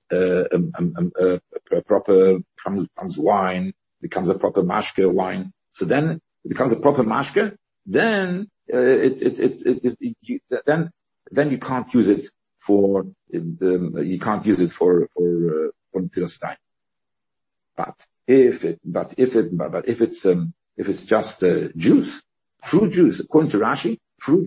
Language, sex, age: English, male, 50-69